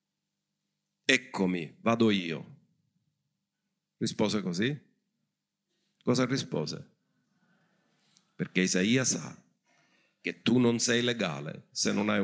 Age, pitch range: 50-69, 110-185 Hz